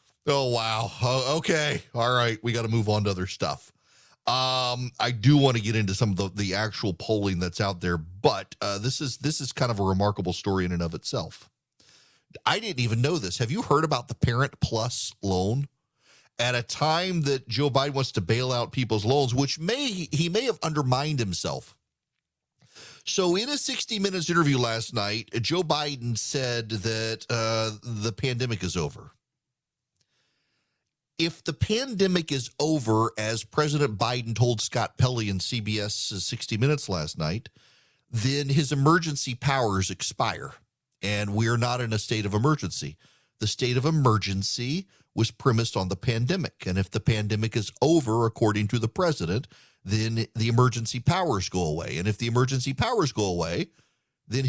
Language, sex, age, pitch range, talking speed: English, male, 40-59, 110-145 Hz, 175 wpm